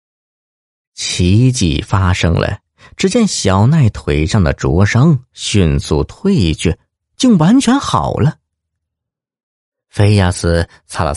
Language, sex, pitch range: Chinese, male, 80-115 Hz